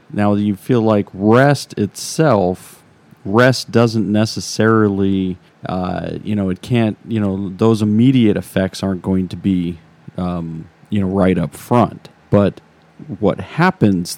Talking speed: 135 wpm